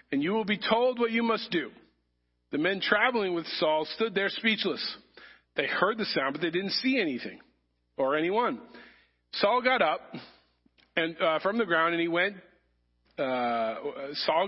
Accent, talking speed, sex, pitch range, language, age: American, 170 wpm, male, 170-235 Hz, English, 40-59